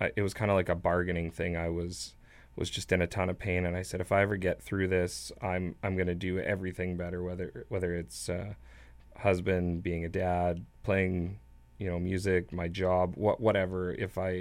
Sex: male